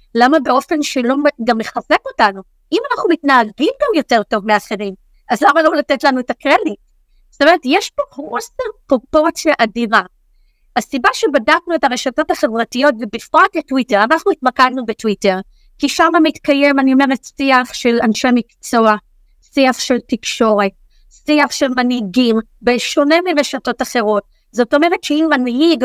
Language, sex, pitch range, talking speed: Hebrew, female, 245-305 Hz, 135 wpm